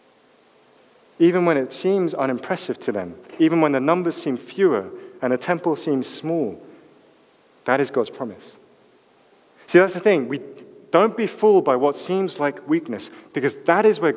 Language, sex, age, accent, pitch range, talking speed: English, male, 30-49, British, 125-175 Hz, 165 wpm